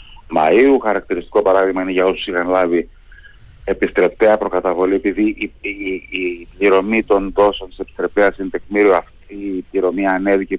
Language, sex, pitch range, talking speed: Greek, male, 90-110 Hz, 125 wpm